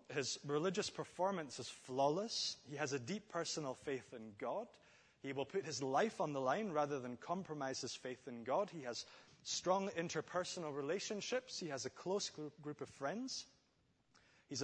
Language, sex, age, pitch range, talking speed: English, male, 30-49, 135-190 Hz, 170 wpm